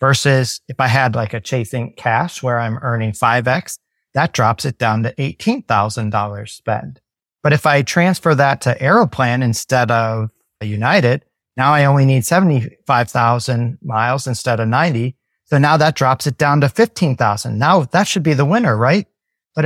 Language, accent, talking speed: English, American, 185 wpm